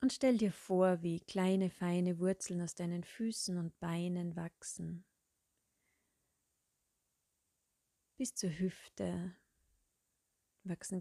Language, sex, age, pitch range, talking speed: German, female, 30-49, 165-195 Hz, 100 wpm